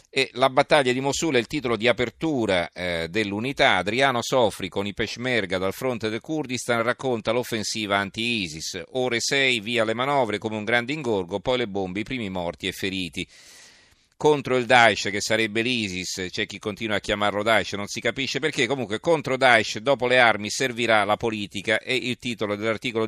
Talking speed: 180 wpm